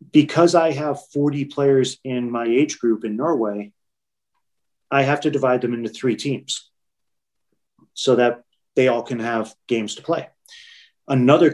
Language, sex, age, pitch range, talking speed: English, male, 30-49, 120-140 Hz, 150 wpm